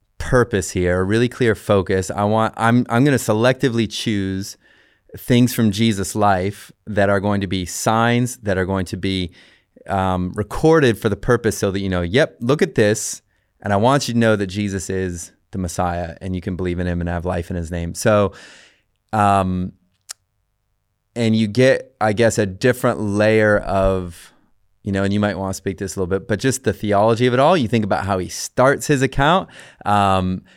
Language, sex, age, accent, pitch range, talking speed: English, male, 30-49, American, 95-110 Hz, 205 wpm